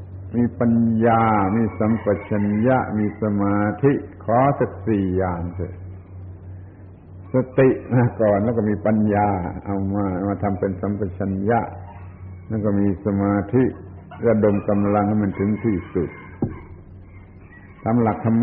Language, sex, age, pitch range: Thai, male, 70-89, 95-115 Hz